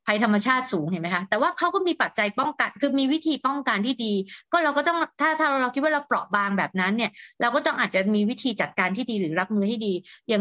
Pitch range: 200-265 Hz